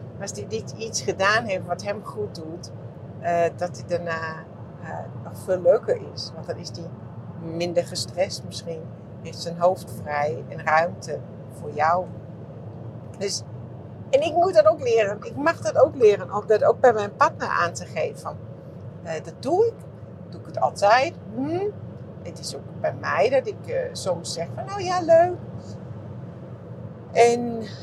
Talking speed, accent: 175 wpm, Dutch